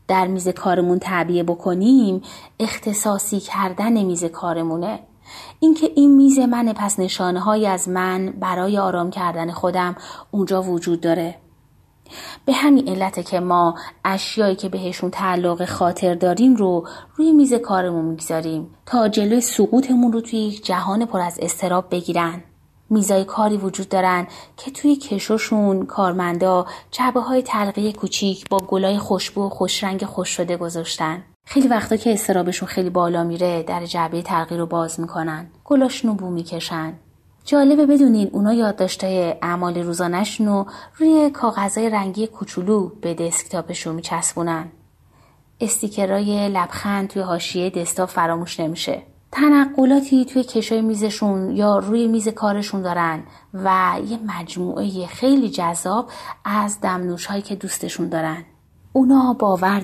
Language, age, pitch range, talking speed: Persian, 30-49, 175-220 Hz, 130 wpm